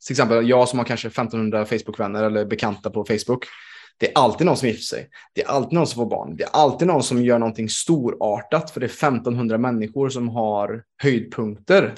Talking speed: 210 wpm